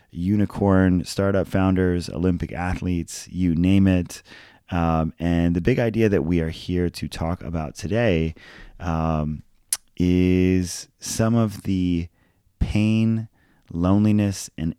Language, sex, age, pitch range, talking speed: English, male, 30-49, 80-90 Hz, 120 wpm